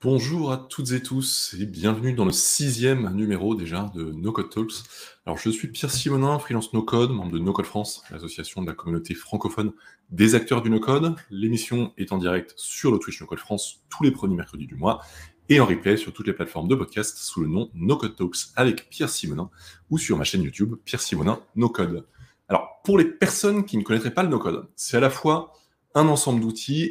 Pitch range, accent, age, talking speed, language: 100-135 Hz, French, 20-39, 205 wpm, French